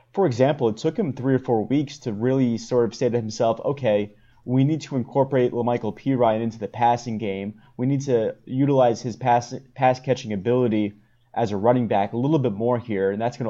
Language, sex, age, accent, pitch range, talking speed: English, male, 30-49, American, 115-130 Hz, 210 wpm